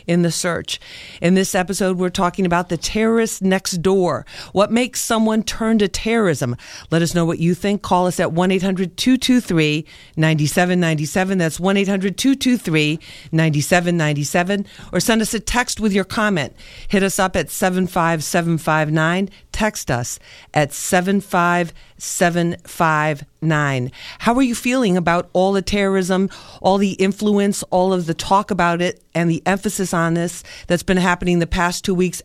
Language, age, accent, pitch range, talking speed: English, 50-69, American, 170-195 Hz, 145 wpm